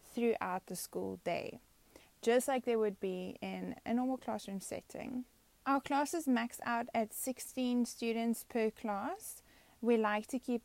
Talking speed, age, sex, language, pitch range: 150 wpm, 20-39, female, English, 205-245 Hz